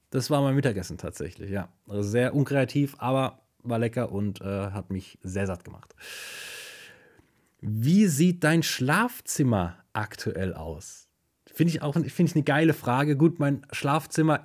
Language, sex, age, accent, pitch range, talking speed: German, male, 30-49, German, 120-160 Hz, 135 wpm